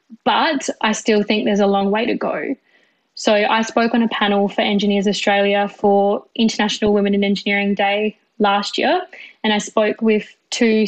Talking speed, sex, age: 175 wpm, female, 10-29